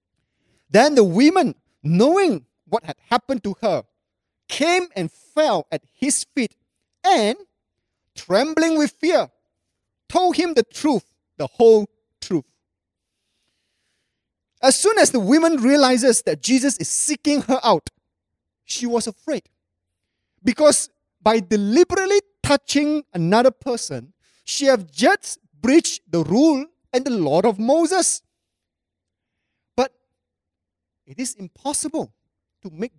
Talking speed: 115 wpm